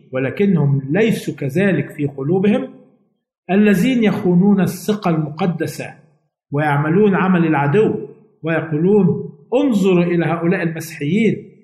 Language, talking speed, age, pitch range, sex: Arabic, 90 wpm, 50-69, 145-185 Hz, male